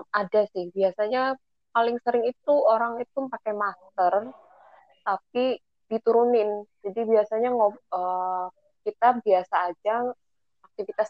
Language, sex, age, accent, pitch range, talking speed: Indonesian, female, 20-39, native, 185-230 Hz, 95 wpm